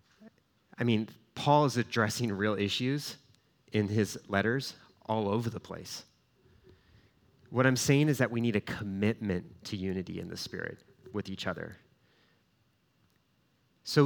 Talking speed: 135 wpm